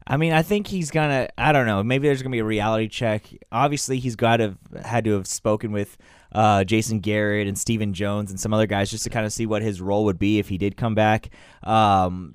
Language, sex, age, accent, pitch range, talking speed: English, male, 20-39, American, 105-130 Hz, 260 wpm